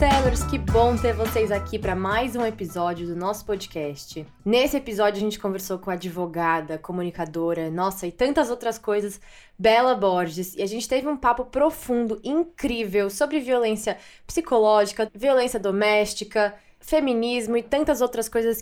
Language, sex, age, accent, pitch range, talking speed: Portuguese, female, 20-39, Brazilian, 195-250 Hz, 150 wpm